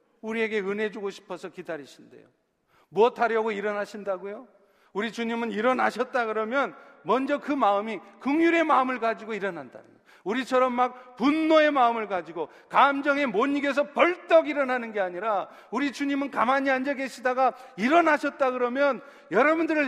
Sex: male